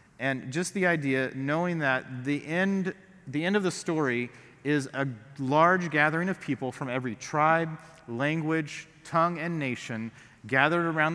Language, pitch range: English, 135-170 Hz